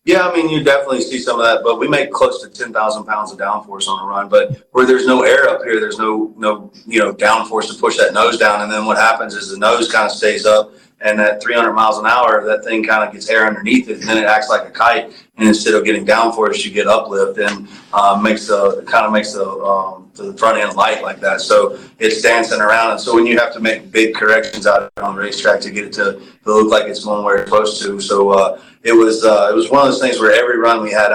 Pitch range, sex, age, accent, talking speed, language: 105-130 Hz, male, 30-49, American, 275 wpm, English